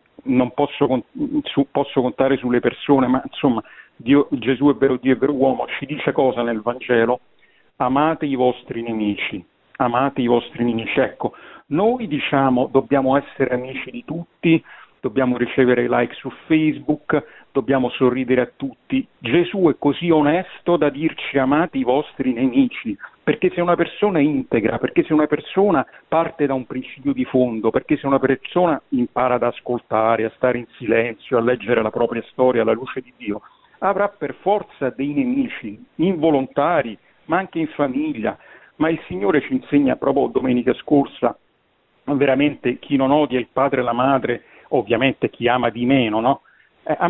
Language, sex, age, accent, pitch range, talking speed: Italian, male, 50-69, native, 125-160 Hz, 160 wpm